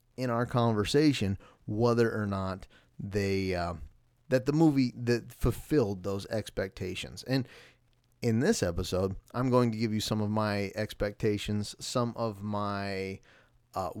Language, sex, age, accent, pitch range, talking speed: English, male, 30-49, American, 105-125 Hz, 135 wpm